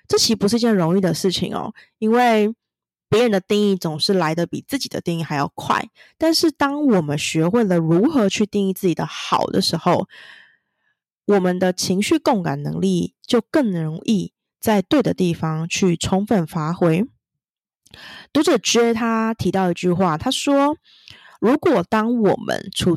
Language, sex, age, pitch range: Chinese, female, 20-39, 175-235 Hz